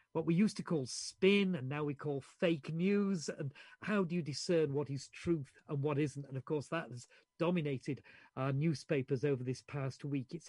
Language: English